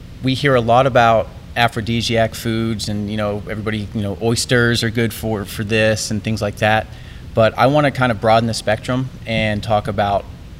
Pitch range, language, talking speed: 100-115 Hz, English, 200 wpm